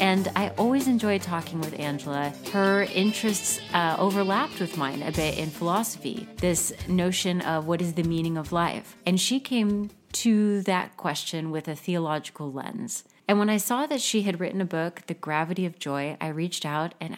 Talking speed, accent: 190 wpm, American